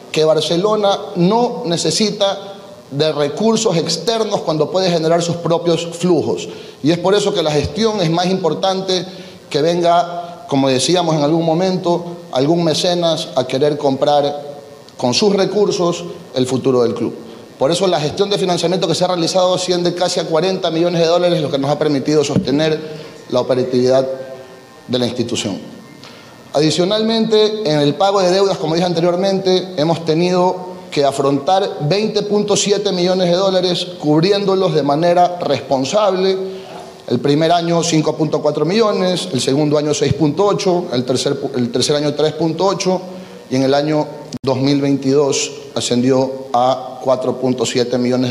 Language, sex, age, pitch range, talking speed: Spanish, male, 30-49, 145-185 Hz, 140 wpm